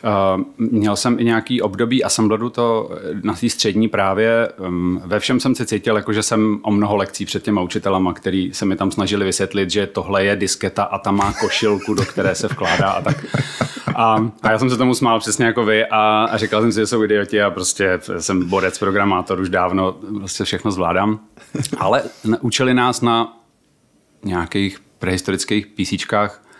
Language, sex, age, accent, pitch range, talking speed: Czech, male, 30-49, native, 95-110 Hz, 185 wpm